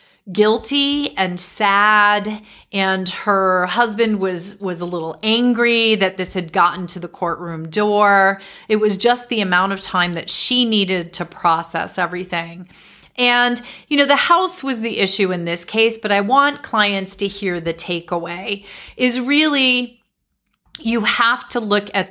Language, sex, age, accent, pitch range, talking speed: English, female, 40-59, American, 175-215 Hz, 155 wpm